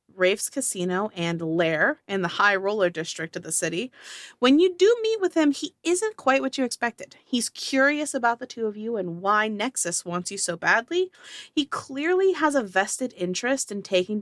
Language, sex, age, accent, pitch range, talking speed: English, female, 30-49, American, 195-285 Hz, 195 wpm